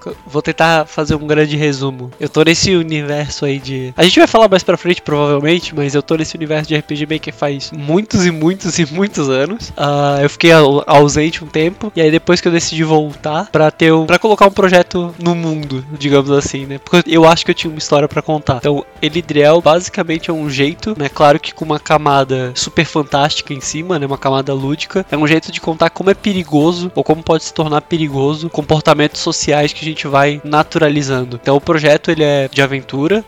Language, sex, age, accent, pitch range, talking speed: Portuguese, male, 20-39, Brazilian, 140-165 Hz, 210 wpm